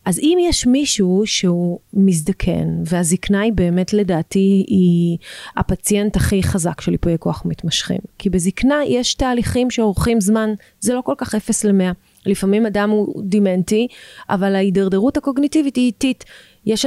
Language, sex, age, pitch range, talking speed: Hebrew, female, 30-49, 190-245 Hz, 140 wpm